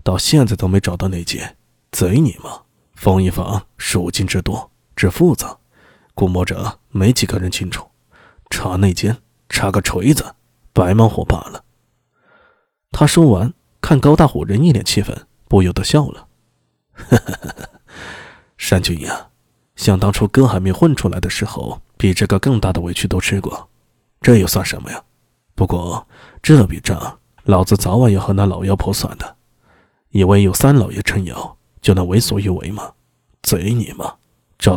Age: 20-39